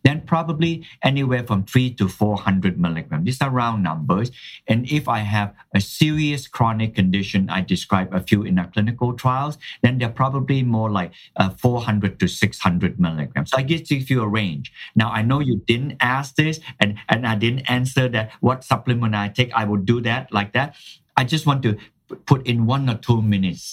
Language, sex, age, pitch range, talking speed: English, male, 50-69, 100-130 Hz, 195 wpm